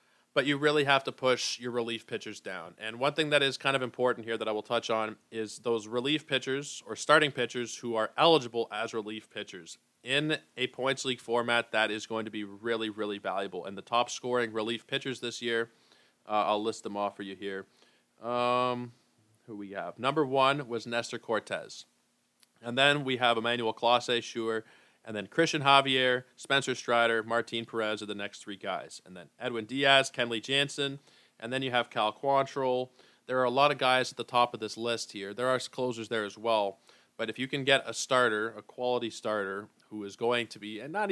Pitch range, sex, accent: 110-130 Hz, male, American